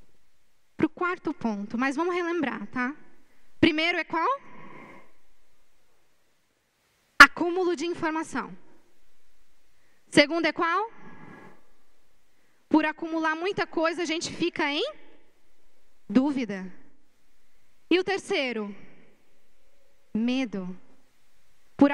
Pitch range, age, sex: 235-310 Hz, 10-29, female